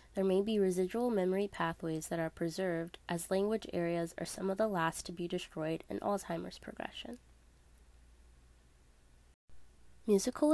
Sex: female